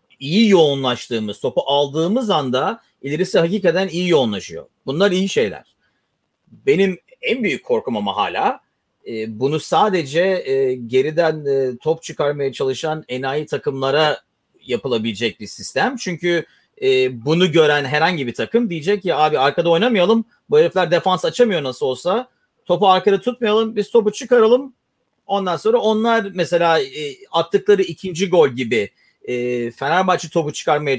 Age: 40-59